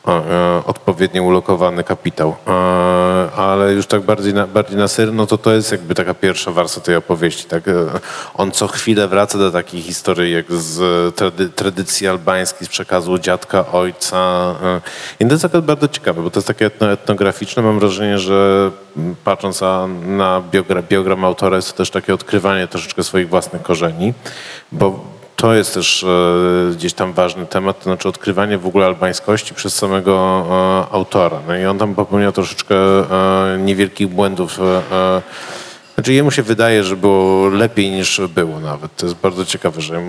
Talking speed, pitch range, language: 160 wpm, 90-105 Hz, Polish